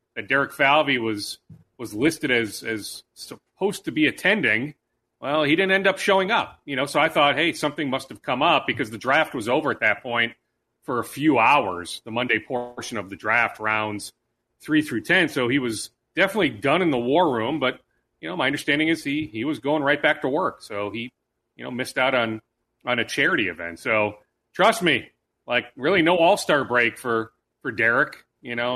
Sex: male